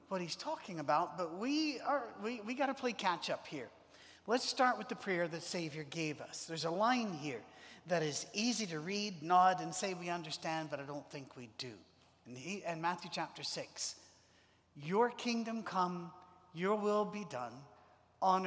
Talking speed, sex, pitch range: 190 wpm, male, 155-220 Hz